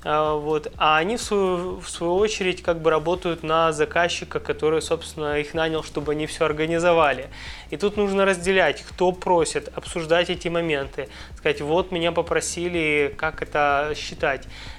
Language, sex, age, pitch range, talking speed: Russian, male, 20-39, 150-185 Hz, 140 wpm